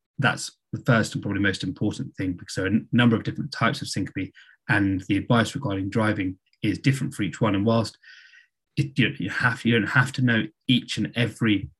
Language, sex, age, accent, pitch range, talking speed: English, male, 20-39, British, 105-135 Hz, 220 wpm